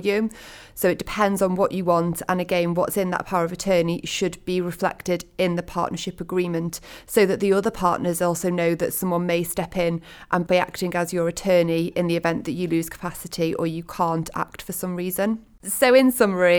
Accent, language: British, English